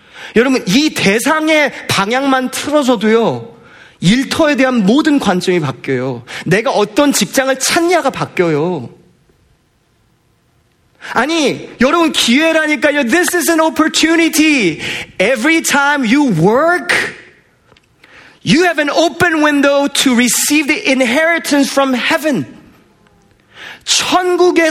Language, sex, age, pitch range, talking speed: English, male, 40-59, 175-290 Hz, 90 wpm